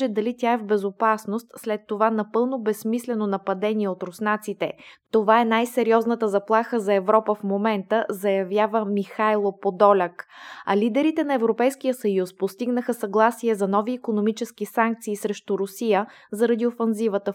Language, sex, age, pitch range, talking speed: Bulgarian, female, 20-39, 200-235 Hz, 130 wpm